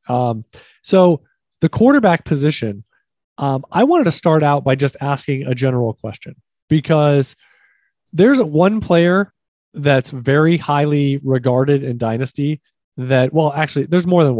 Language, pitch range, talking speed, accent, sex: English, 130-160 Hz, 140 wpm, American, male